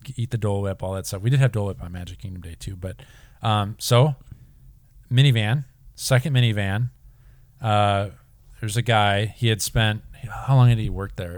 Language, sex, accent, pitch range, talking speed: English, male, American, 95-120 Hz, 190 wpm